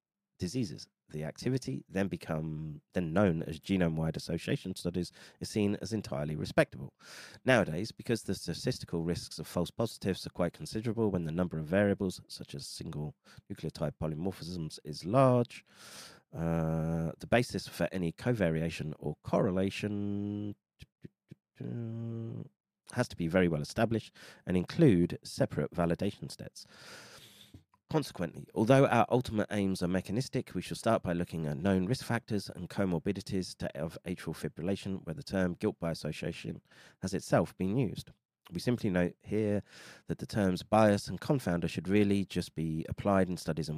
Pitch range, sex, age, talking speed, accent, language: 80-105 Hz, male, 30-49, 145 wpm, British, English